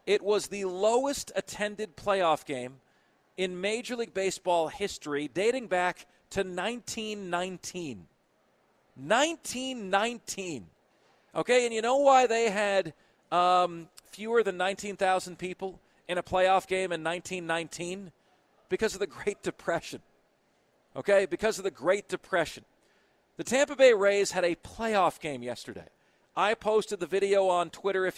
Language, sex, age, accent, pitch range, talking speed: English, male, 40-59, American, 170-205 Hz, 130 wpm